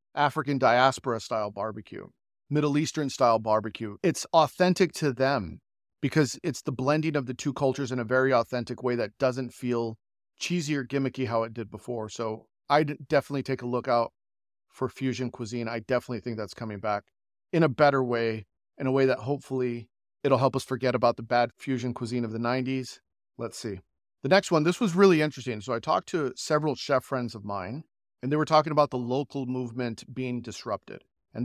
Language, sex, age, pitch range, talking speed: English, male, 40-59, 115-140 Hz, 195 wpm